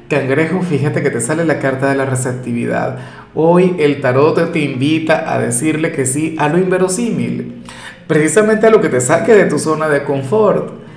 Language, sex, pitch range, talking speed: Spanish, male, 140-180 Hz, 180 wpm